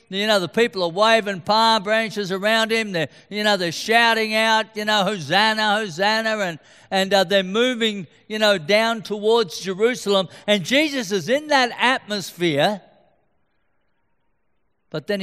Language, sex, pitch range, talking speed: English, male, 150-205 Hz, 150 wpm